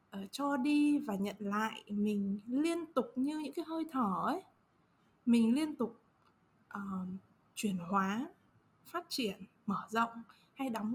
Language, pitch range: Vietnamese, 210-280 Hz